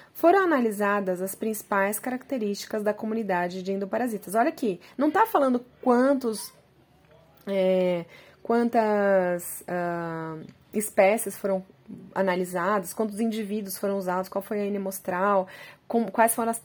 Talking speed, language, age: 115 wpm, Portuguese, 20-39